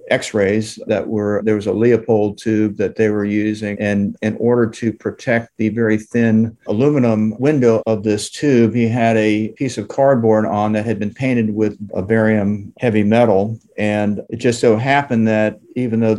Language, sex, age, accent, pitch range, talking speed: English, male, 50-69, American, 105-115 Hz, 180 wpm